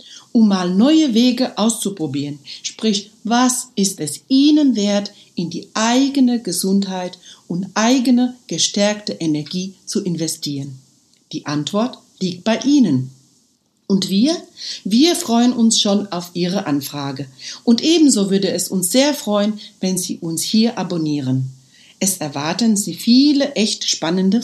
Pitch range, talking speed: 170-245 Hz, 130 wpm